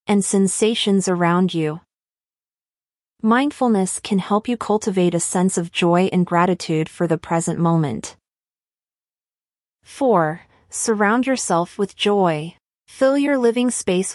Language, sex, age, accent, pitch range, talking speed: English, female, 30-49, American, 170-220 Hz, 120 wpm